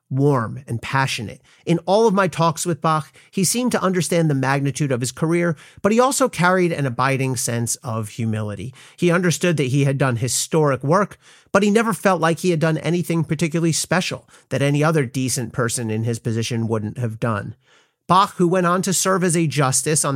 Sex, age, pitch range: male, 40-59, 130-175 Hz